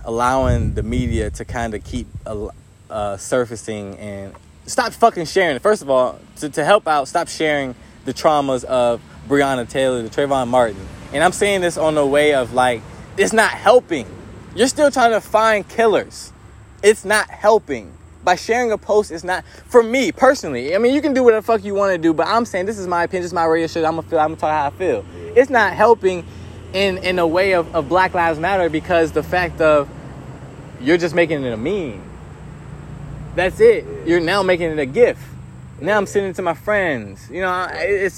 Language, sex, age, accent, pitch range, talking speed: English, male, 20-39, American, 125-195 Hz, 210 wpm